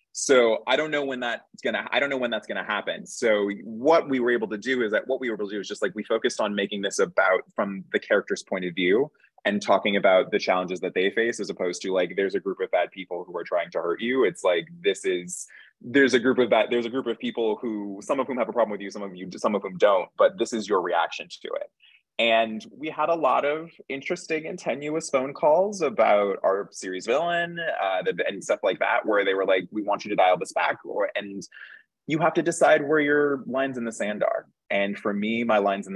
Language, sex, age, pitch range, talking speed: English, male, 20-39, 100-145 Hz, 255 wpm